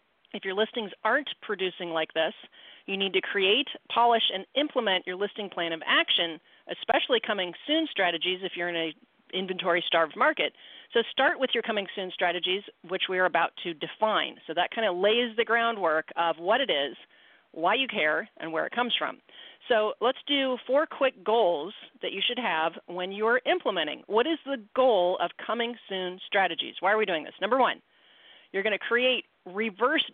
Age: 40-59